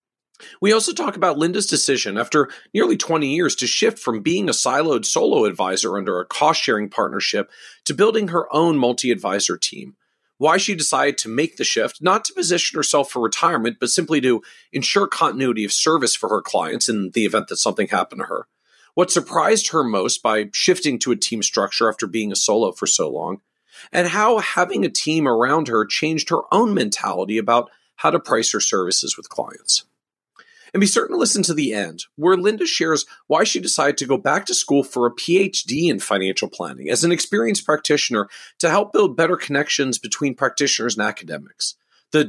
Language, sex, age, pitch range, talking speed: English, male, 40-59, 120-180 Hz, 190 wpm